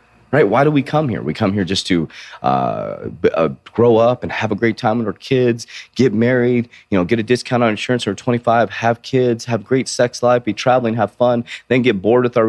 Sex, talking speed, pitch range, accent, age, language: male, 235 wpm, 100-125 Hz, American, 30-49, English